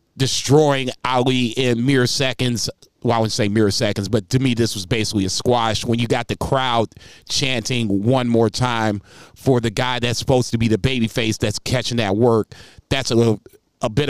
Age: 30-49